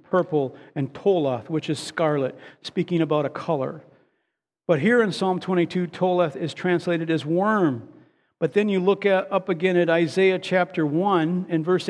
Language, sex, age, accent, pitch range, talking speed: English, male, 50-69, American, 155-180 Hz, 165 wpm